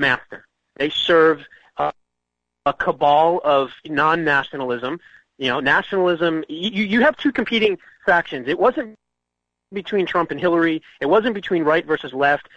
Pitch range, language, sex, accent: 140-195 Hz, English, male, American